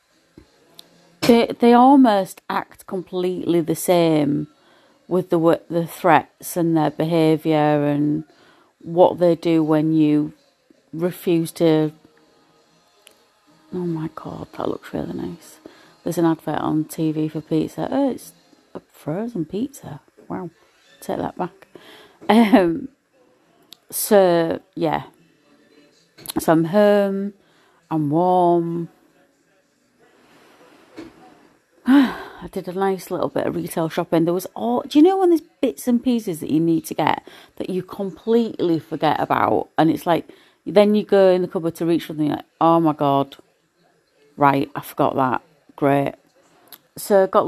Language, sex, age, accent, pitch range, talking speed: English, female, 30-49, British, 160-240 Hz, 135 wpm